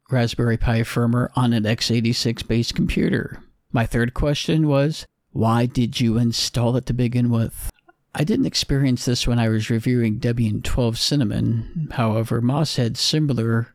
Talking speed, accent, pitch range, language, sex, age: 150 wpm, American, 115-130 Hz, English, male, 50-69